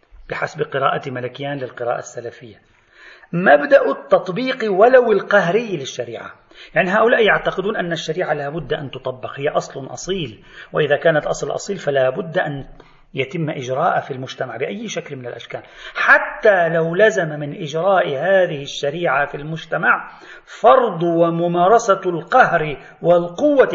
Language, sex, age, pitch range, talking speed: Arabic, male, 40-59, 130-185 Hz, 125 wpm